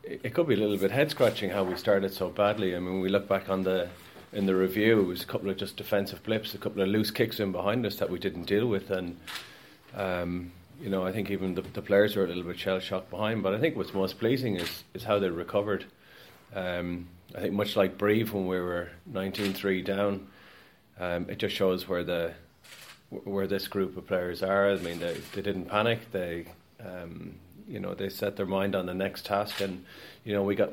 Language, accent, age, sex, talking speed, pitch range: English, Irish, 30-49, male, 235 wpm, 90-100 Hz